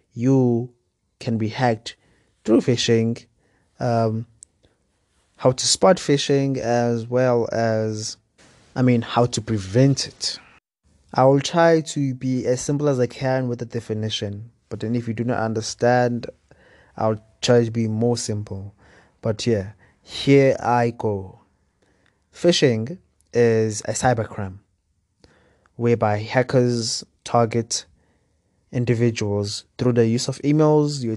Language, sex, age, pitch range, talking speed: English, male, 20-39, 110-130 Hz, 125 wpm